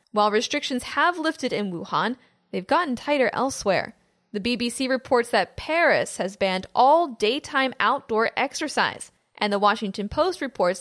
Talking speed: 145 wpm